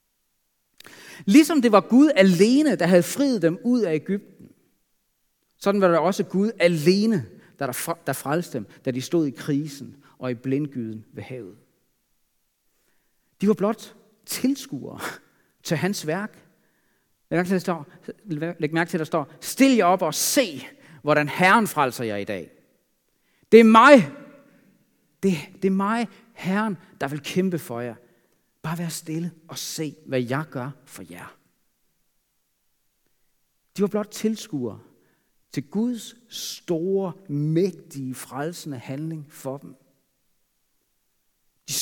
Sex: male